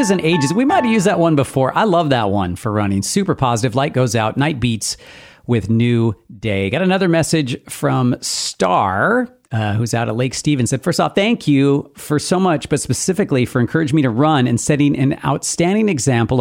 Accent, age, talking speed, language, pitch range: American, 40-59, 205 wpm, English, 110-155 Hz